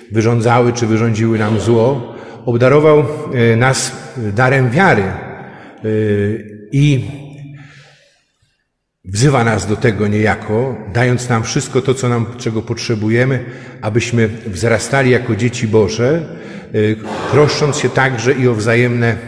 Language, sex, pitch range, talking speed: Polish, male, 115-135 Hz, 105 wpm